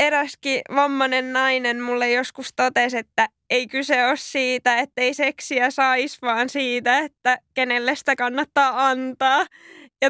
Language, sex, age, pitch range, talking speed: Finnish, female, 20-39, 240-280 Hz, 135 wpm